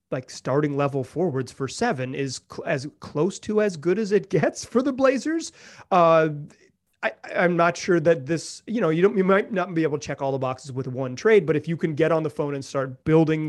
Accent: American